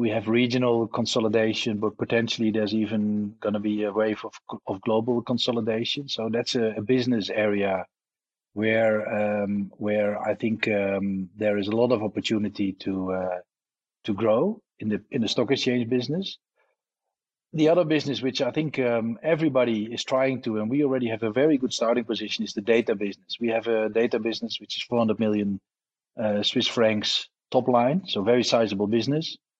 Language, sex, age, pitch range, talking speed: English, male, 40-59, 105-125 Hz, 180 wpm